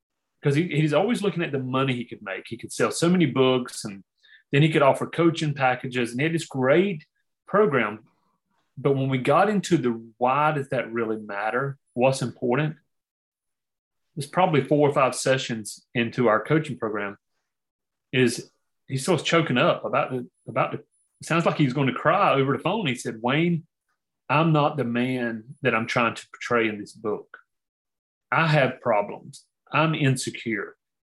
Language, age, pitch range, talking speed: English, 30-49, 125-155 Hz, 180 wpm